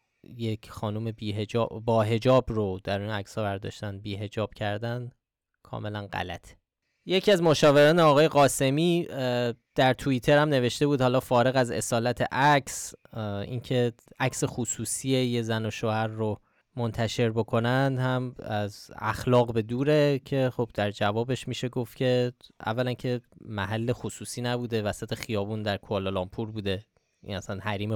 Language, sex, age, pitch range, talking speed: Persian, male, 20-39, 110-130 Hz, 140 wpm